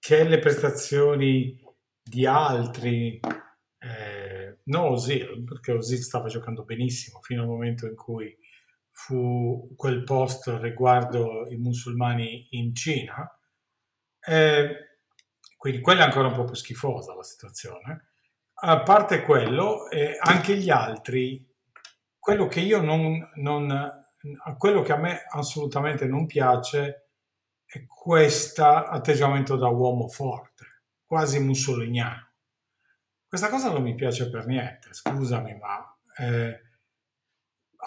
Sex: male